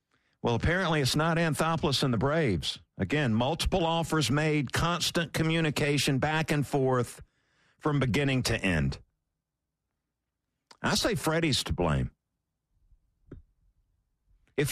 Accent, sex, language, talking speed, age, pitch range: American, male, English, 110 wpm, 50-69, 115-155 Hz